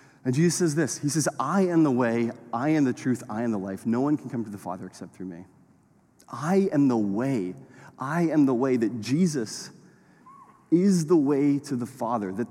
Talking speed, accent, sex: 215 wpm, American, male